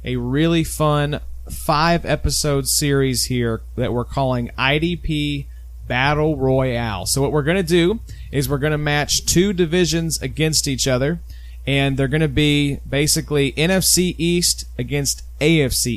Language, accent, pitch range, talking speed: English, American, 125-160 Hz, 145 wpm